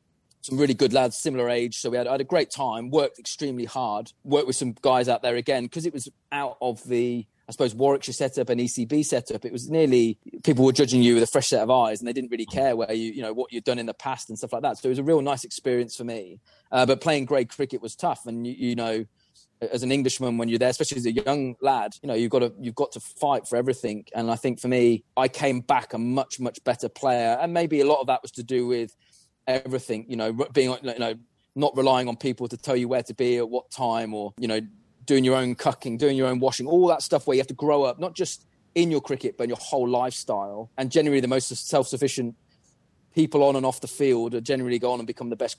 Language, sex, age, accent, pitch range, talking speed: English, male, 30-49, British, 120-135 Hz, 265 wpm